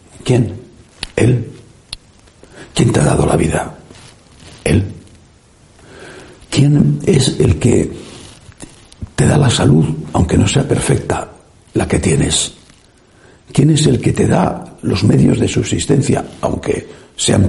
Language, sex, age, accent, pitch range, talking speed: Spanish, male, 60-79, Spanish, 90-125 Hz, 125 wpm